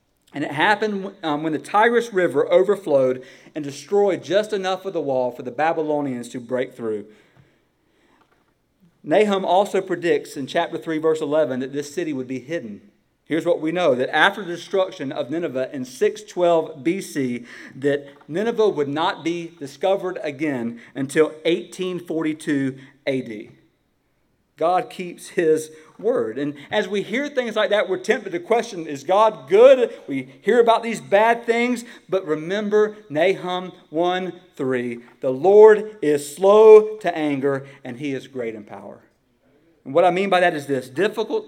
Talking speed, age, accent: 155 wpm, 50-69, American